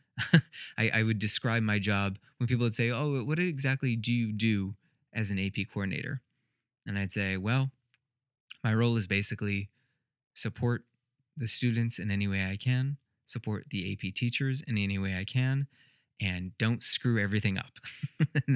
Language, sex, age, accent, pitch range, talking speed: English, male, 20-39, American, 100-125 Hz, 165 wpm